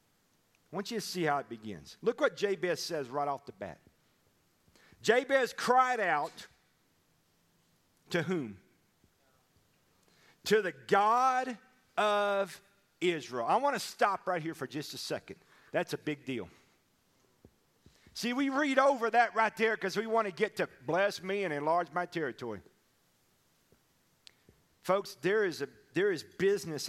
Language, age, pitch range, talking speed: English, 40-59, 165-235 Hz, 145 wpm